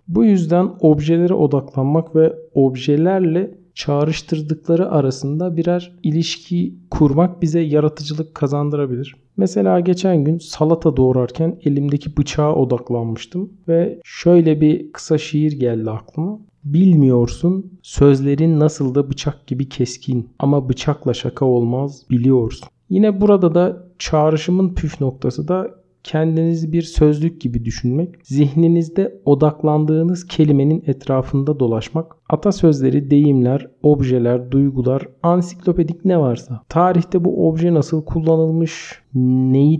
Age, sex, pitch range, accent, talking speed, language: 50-69, male, 140-175 Hz, native, 105 wpm, Turkish